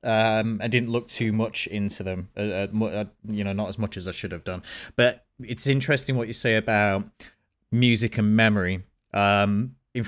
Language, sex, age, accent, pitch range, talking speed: English, male, 30-49, British, 95-115 Hz, 190 wpm